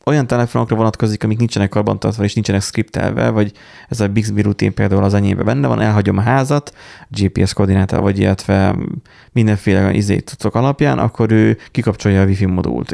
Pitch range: 100-125 Hz